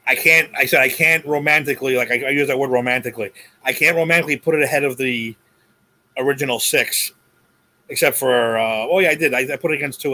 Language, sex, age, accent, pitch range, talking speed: English, male, 30-49, American, 125-160 Hz, 220 wpm